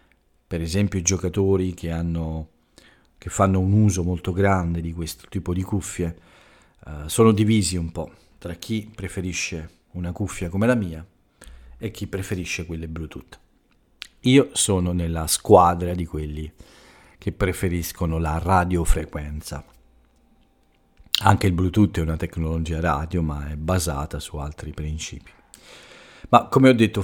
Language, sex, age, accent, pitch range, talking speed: Italian, male, 40-59, native, 80-100 Hz, 135 wpm